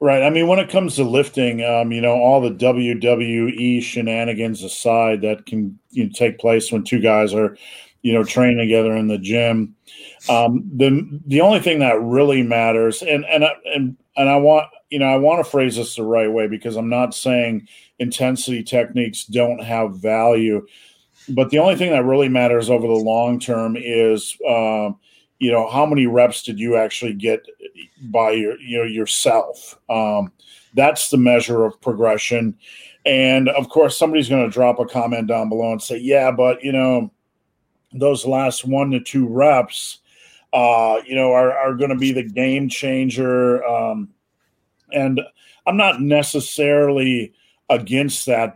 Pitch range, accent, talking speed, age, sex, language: 115-135 Hz, American, 175 wpm, 40-59, male, English